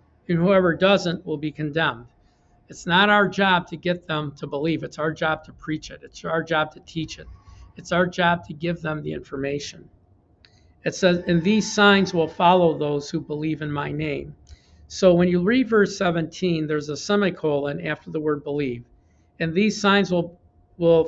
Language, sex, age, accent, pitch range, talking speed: English, male, 50-69, American, 145-180 Hz, 190 wpm